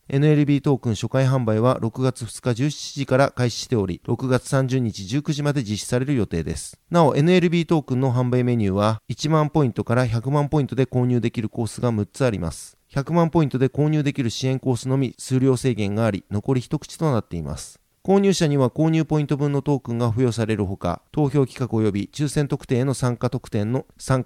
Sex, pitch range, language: male, 115-150 Hz, Japanese